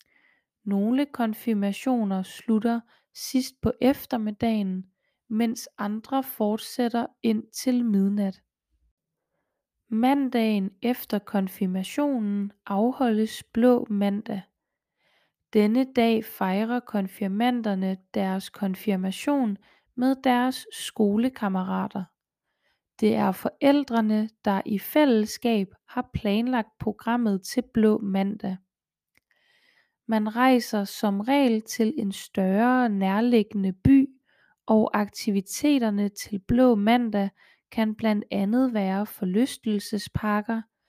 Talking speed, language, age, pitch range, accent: 85 wpm, Danish, 20-39, 205-245 Hz, native